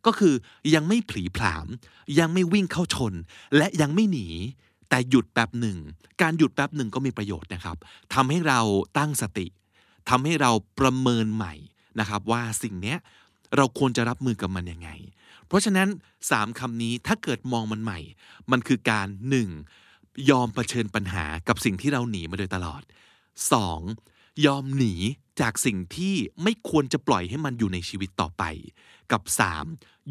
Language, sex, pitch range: Thai, male, 95-140 Hz